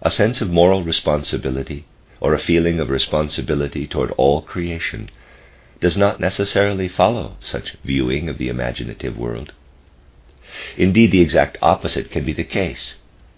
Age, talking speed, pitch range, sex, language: 50-69, 140 wpm, 70-90 Hz, male, English